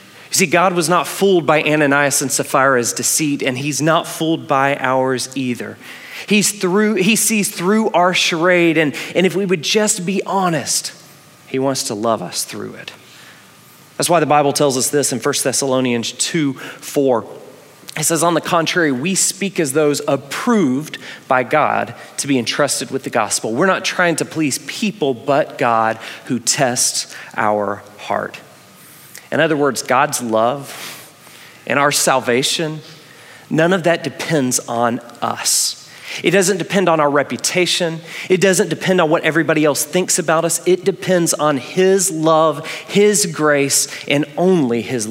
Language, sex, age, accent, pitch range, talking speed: English, male, 30-49, American, 135-180 Hz, 160 wpm